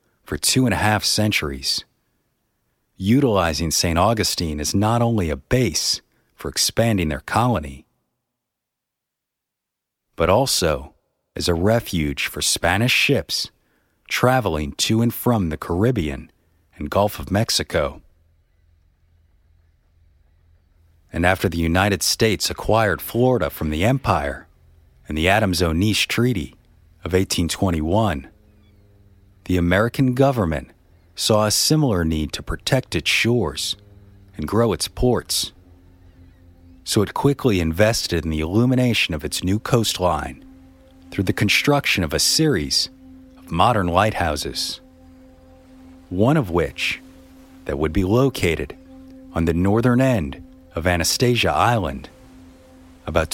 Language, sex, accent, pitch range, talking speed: English, male, American, 85-110 Hz, 115 wpm